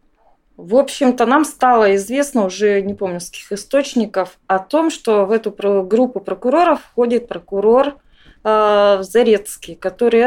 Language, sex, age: Russian, female, 20-39